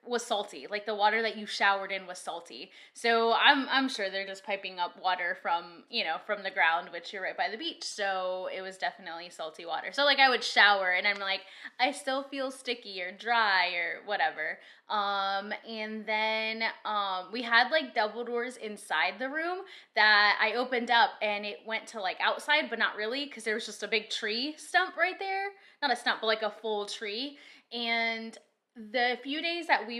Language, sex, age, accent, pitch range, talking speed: English, female, 10-29, American, 195-245 Hz, 205 wpm